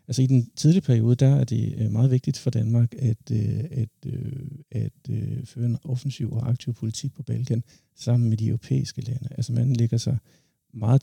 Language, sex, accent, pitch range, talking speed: Danish, male, native, 120-140 Hz, 190 wpm